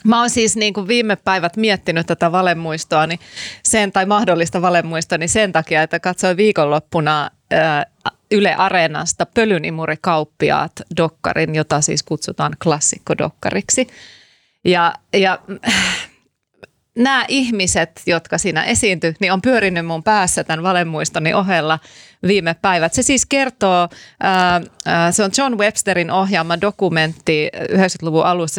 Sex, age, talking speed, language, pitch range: female, 30-49, 120 wpm, Finnish, 160-205 Hz